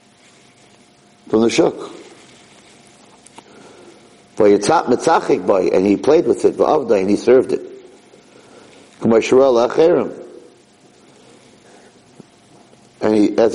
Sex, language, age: male, English, 50-69